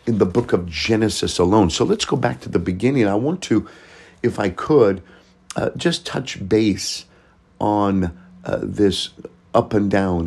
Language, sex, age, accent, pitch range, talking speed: English, male, 50-69, American, 85-105 Hz, 170 wpm